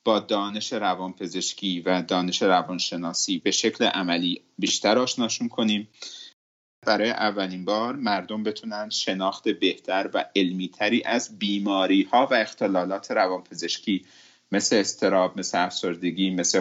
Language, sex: Persian, male